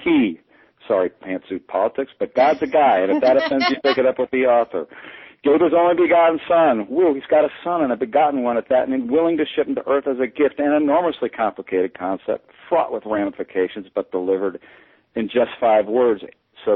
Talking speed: 210 wpm